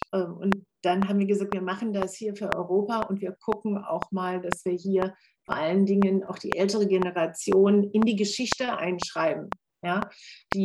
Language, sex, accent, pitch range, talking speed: German, female, German, 190-215 Hz, 175 wpm